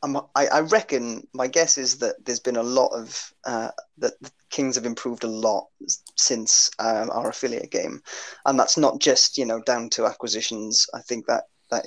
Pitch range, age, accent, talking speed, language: 115-125 Hz, 20-39, British, 185 wpm, English